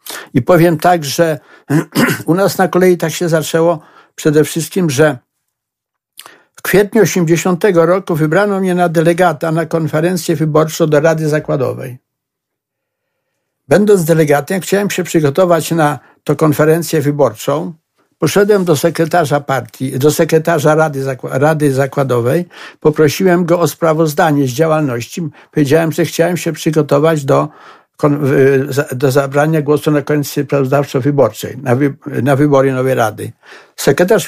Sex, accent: male, native